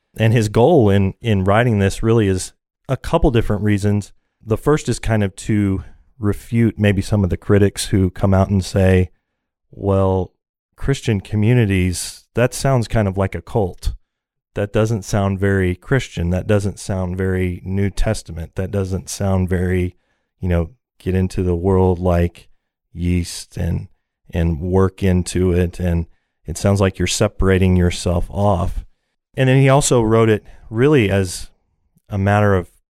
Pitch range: 95-110 Hz